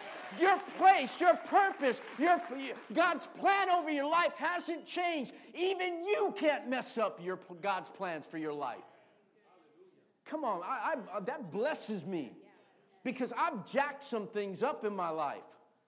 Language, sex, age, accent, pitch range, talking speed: English, male, 50-69, American, 185-275 Hz, 145 wpm